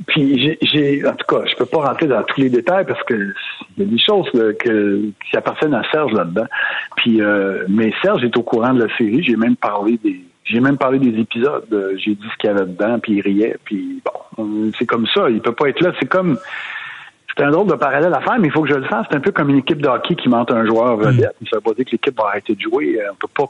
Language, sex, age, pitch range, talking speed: French, male, 60-79, 110-170 Hz, 275 wpm